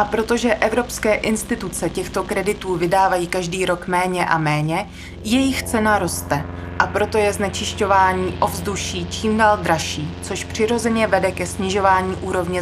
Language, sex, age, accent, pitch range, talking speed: Czech, female, 20-39, native, 175-215 Hz, 140 wpm